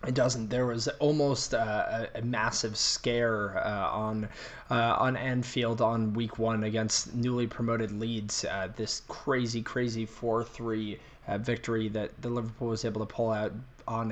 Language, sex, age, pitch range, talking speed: English, male, 20-39, 110-125 Hz, 160 wpm